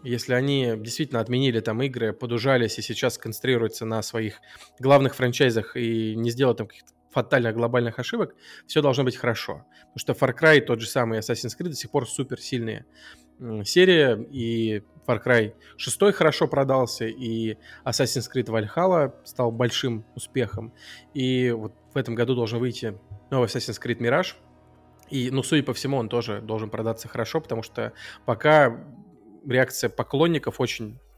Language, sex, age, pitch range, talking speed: Russian, male, 20-39, 110-135 Hz, 155 wpm